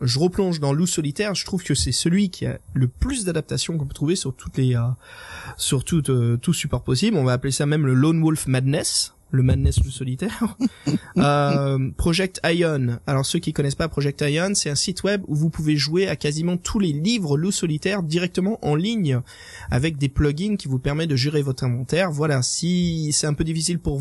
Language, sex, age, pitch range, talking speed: French, male, 20-39, 130-170 Hz, 225 wpm